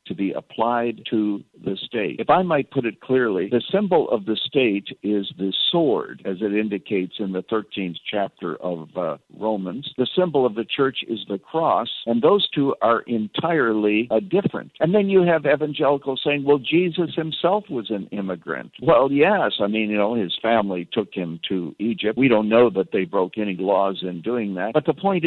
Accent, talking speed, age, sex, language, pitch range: American, 195 wpm, 60-79, male, English, 100-140 Hz